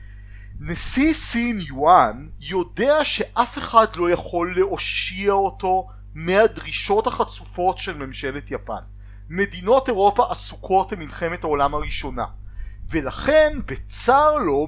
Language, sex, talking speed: Hebrew, male, 100 wpm